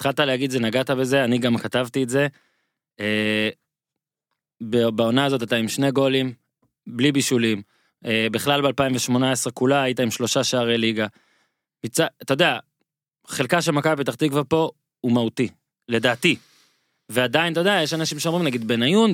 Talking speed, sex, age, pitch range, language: 150 wpm, male, 20-39, 125-160 Hz, Hebrew